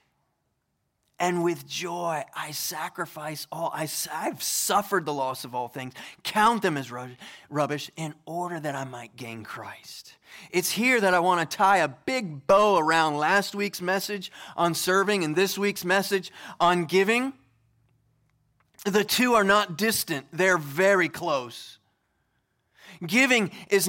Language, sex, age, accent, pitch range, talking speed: English, male, 20-39, American, 165-210 Hz, 140 wpm